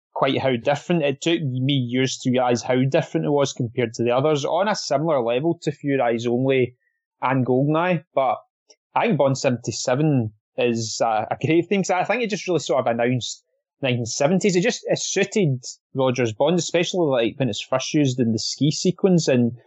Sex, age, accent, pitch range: male, 20-39, British, 125-160 Hz